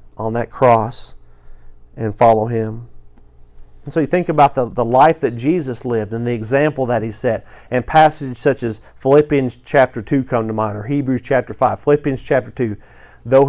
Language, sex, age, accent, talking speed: English, male, 40-59, American, 180 wpm